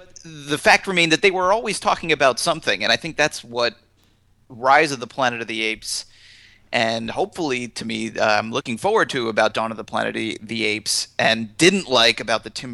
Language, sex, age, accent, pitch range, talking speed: English, male, 30-49, American, 115-160 Hz, 210 wpm